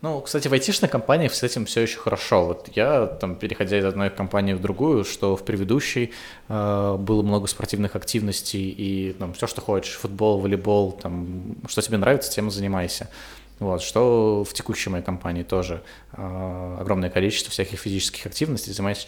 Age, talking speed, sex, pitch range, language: 20-39, 175 wpm, male, 95-110 Hz, Russian